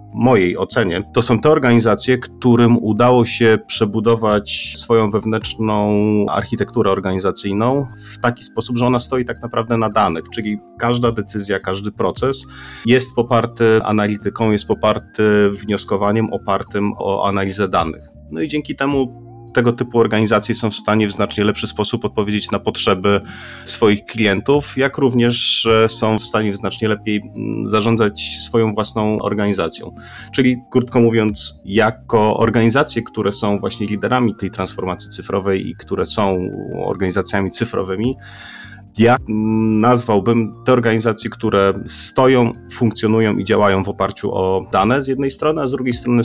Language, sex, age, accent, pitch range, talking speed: Polish, male, 40-59, native, 100-115 Hz, 140 wpm